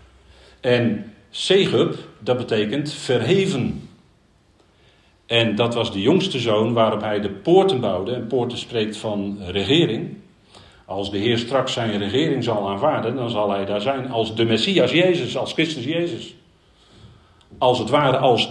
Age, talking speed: 50-69, 145 wpm